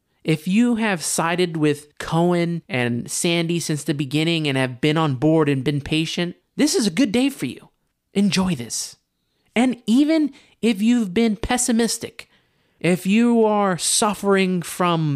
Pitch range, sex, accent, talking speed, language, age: 150-210 Hz, male, American, 155 wpm, English, 20-39